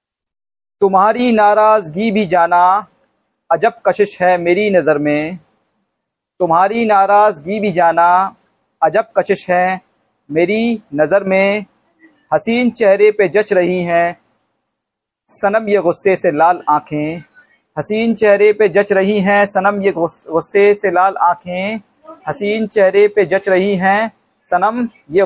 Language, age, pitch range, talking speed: Hindi, 50-69, 165-210 Hz, 125 wpm